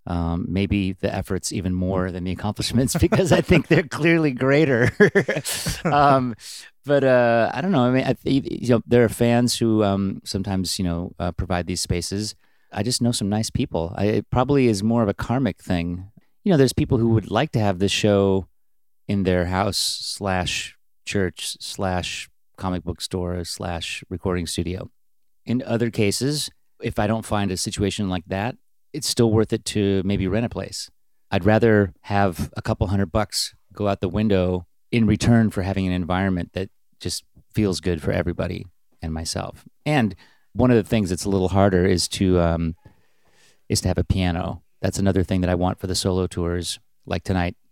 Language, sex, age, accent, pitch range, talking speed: English, male, 30-49, American, 90-115 Hz, 190 wpm